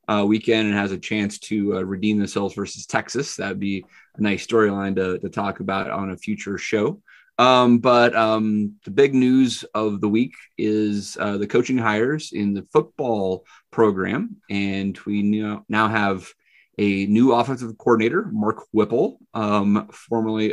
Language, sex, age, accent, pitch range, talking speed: English, male, 30-49, American, 100-115 Hz, 160 wpm